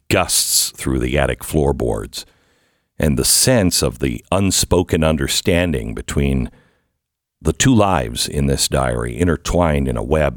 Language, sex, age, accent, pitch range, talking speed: English, male, 60-79, American, 75-105 Hz, 135 wpm